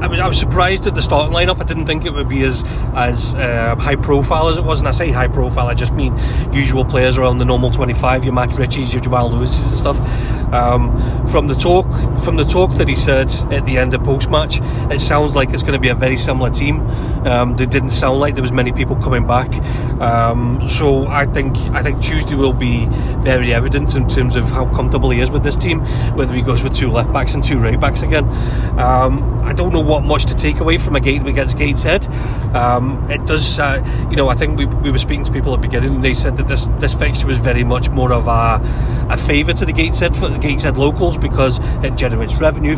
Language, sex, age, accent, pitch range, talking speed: English, male, 30-49, British, 120-130 Hz, 235 wpm